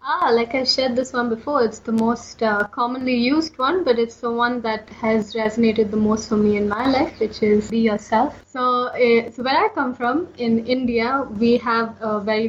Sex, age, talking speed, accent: female, 20-39, 215 wpm, Indian